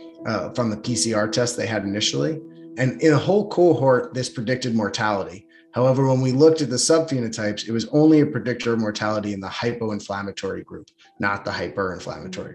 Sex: male